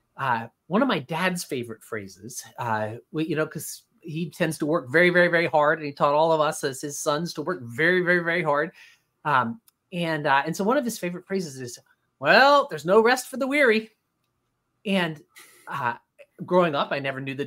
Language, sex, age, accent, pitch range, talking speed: English, male, 30-49, American, 150-215 Hz, 210 wpm